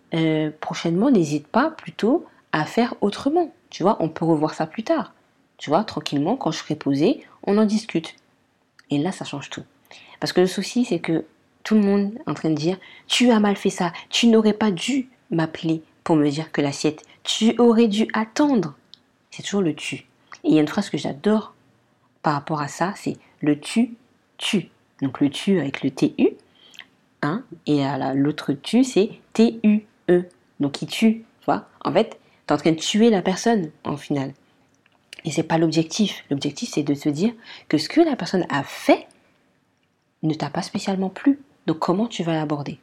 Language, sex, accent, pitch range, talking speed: French, female, French, 150-210 Hz, 190 wpm